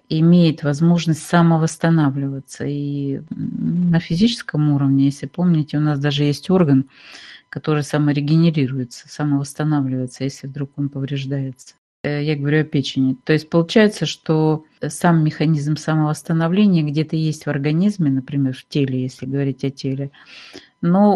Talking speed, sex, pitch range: 125 wpm, female, 140-165 Hz